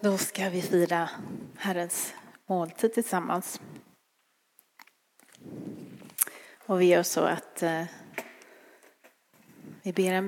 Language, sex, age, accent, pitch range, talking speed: Swedish, female, 30-49, native, 180-205 Hz, 95 wpm